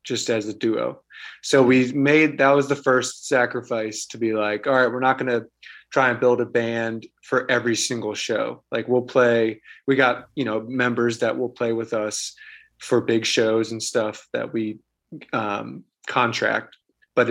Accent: American